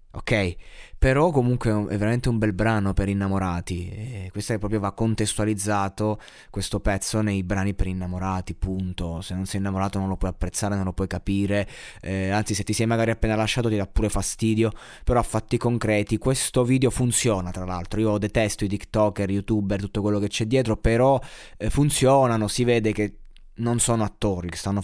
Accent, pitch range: native, 100-120 Hz